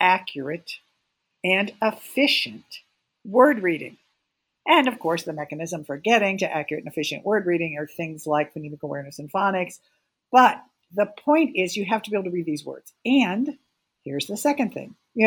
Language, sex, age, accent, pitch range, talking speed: English, female, 50-69, American, 165-220 Hz, 175 wpm